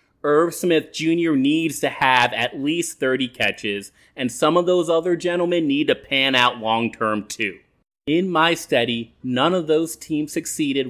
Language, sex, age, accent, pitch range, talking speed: English, male, 30-49, American, 125-170 Hz, 170 wpm